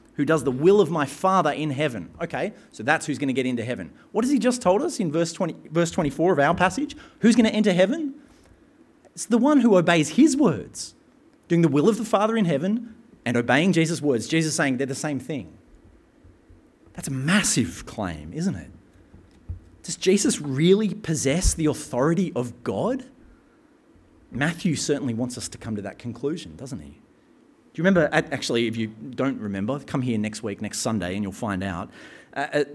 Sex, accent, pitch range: male, Australian, 125-210 Hz